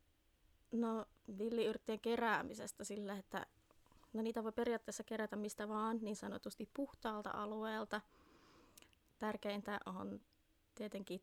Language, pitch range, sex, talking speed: Finnish, 195-220 Hz, female, 95 wpm